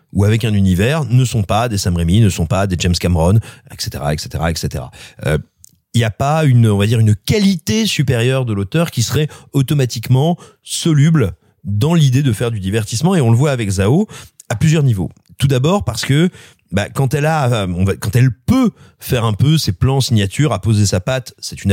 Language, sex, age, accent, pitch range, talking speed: French, male, 40-59, French, 110-150 Hz, 215 wpm